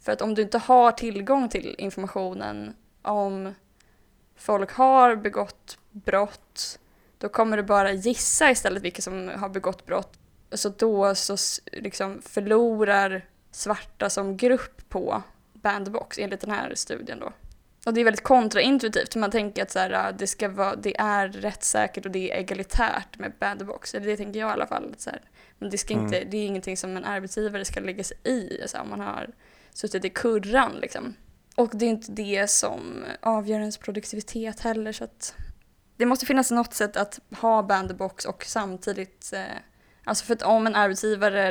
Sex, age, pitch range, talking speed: female, 10-29, 190-220 Hz, 175 wpm